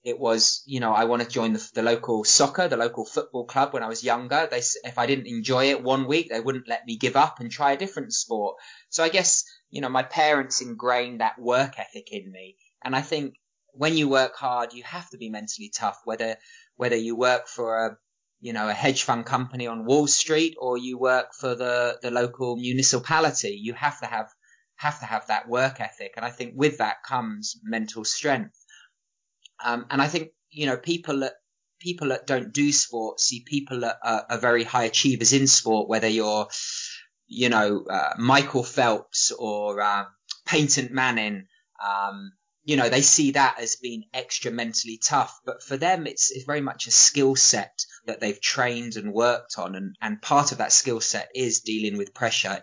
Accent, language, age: British, English, 20-39